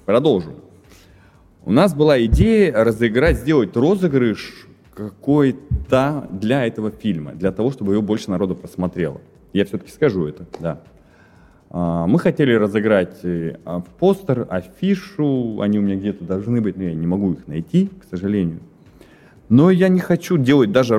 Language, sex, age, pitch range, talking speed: Russian, male, 20-39, 100-135 Hz, 145 wpm